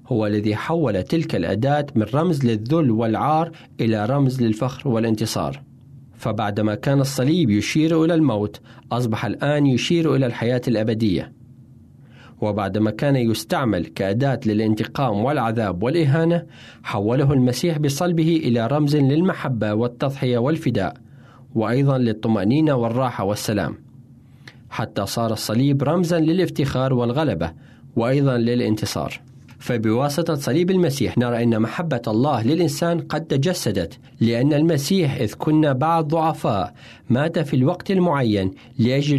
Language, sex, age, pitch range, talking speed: Arabic, male, 40-59, 115-150 Hz, 110 wpm